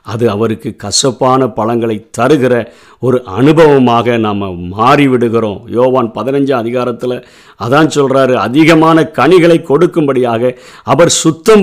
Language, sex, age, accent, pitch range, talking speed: Tamil, male, 50-69, native, 120-160 Hz, 100 wpm